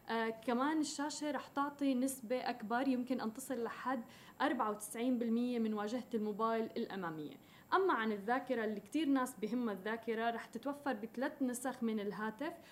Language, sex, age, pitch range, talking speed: Arabic, female, 20-39, 225-265 Hz, 140 wpm